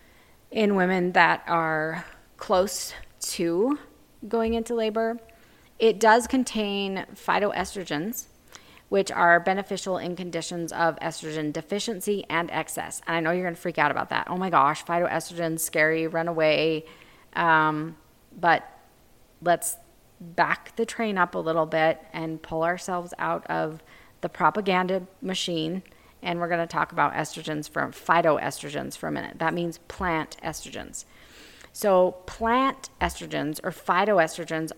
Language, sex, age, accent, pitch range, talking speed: English, female, 30-49, American, 160-210 Hz, 135 wpm